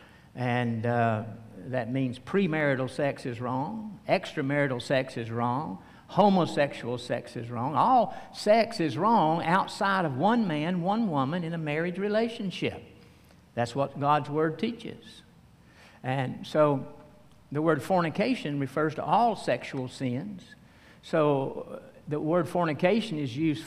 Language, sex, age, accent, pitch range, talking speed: English, male, 60-79, American, 130-195 Hz, 130 wpm